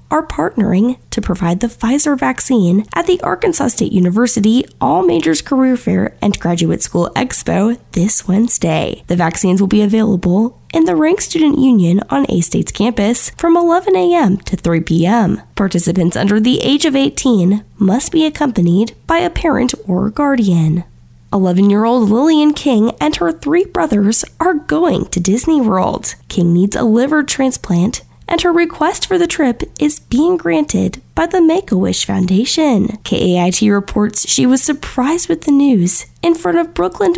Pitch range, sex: 190-305 Hz, female